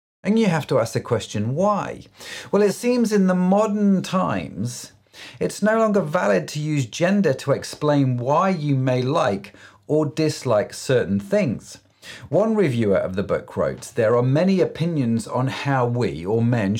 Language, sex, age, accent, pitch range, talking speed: English, male, 40-59, British, 110-175 Hz, 170 wpm